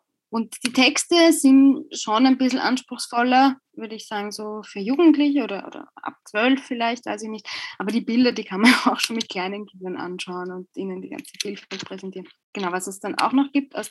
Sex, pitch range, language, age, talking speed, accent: female, 195-265 Hz, German, 20-39, 205 wpm, German